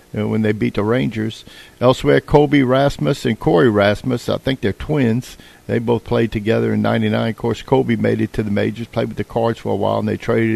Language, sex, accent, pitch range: English, male, American, 105-130 Hz